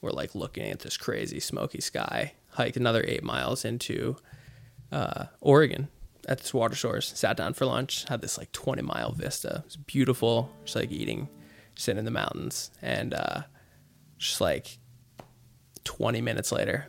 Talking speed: 165 wpm